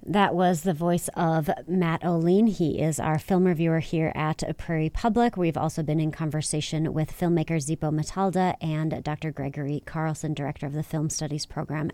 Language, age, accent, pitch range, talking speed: English, 30-49, American, 155-190 Hz, 175 wpm